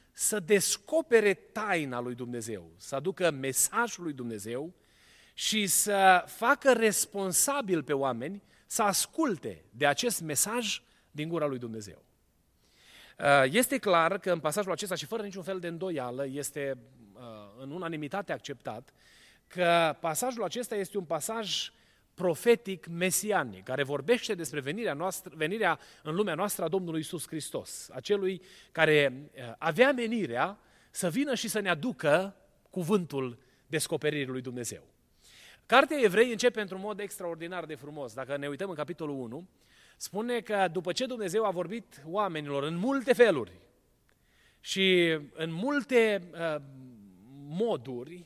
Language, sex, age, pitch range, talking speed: Romanian, male, 30-49, 145-210 Hz, 130 wpm